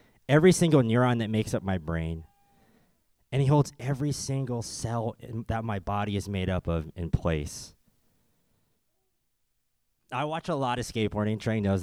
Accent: American